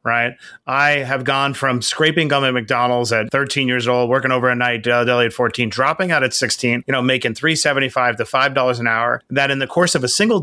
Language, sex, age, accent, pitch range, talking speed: English, male, 30-49, American, 120-140 Hz, 225 wpm